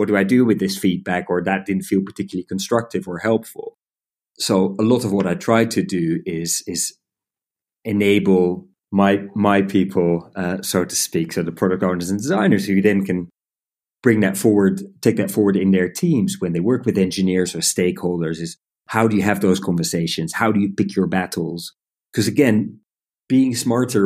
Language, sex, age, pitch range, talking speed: English, male, 30-49, 90-115 Hz, 190 wpm